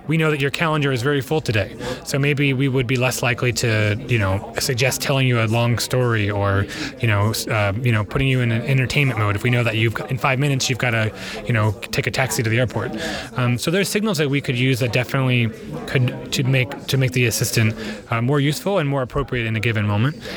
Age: 20-39